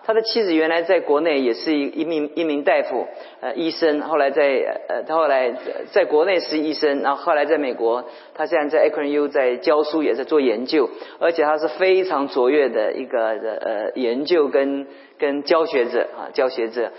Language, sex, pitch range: Chinese, male, 145-190 Hz